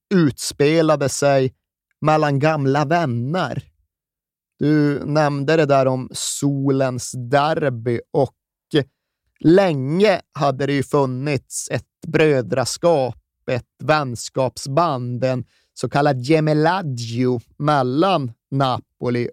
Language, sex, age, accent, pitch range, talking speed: Swedish, male, 30-49, native, 125-145 Hz, 85 wpm